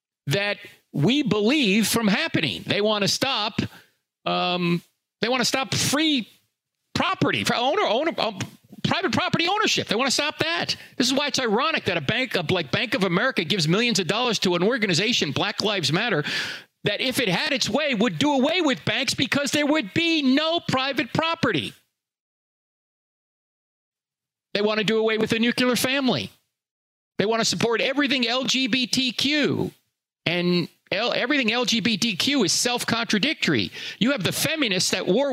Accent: American